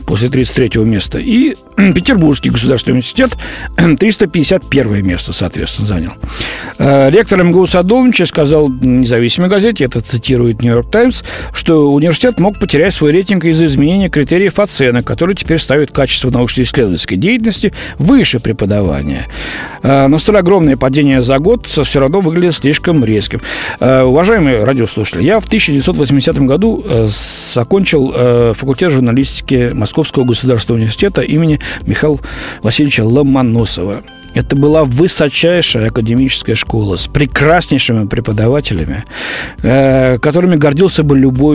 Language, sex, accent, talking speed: Russian, male, native, 120 wpm